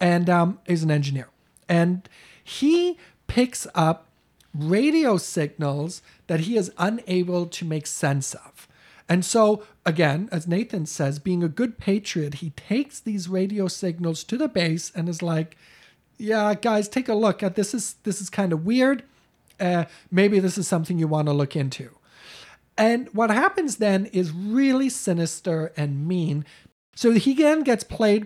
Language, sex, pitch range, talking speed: English, male, 165-215 Hz, 160 wpm